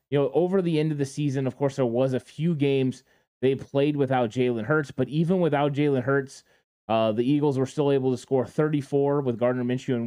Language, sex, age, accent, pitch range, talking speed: English, male, 20-39, American, 130-150 Hz, 225 wpm